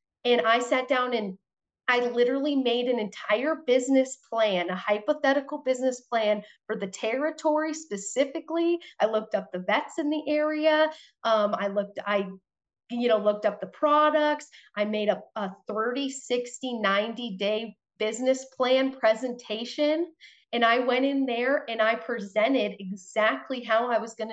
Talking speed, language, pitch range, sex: 155 wpm, English, 215-260 Hz, female